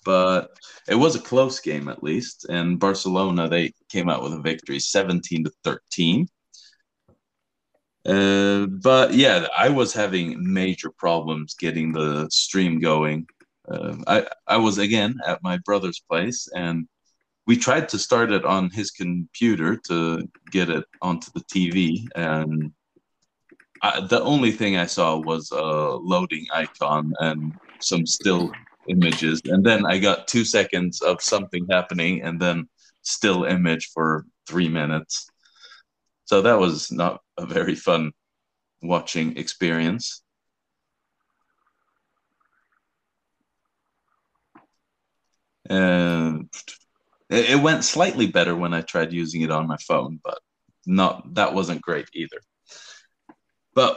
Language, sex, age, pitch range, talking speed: English, male, 30-49, 80-100 Hz, 125 wpm